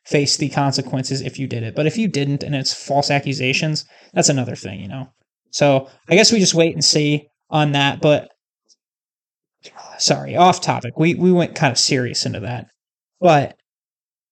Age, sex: 20-39, male